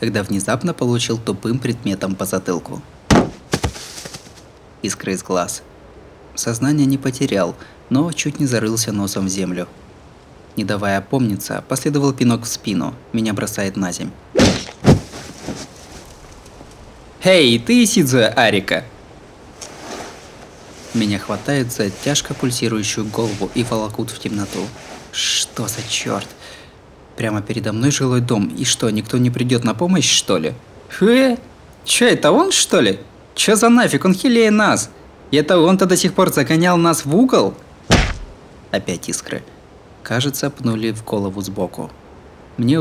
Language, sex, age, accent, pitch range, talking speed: Russian, male, 20-39, native, 105-145 Hz, 130 wpm